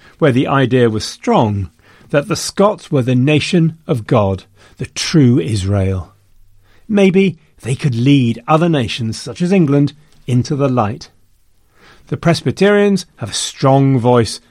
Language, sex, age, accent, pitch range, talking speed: English, male, 40-59, British, 115-160 Hz, 140 wpm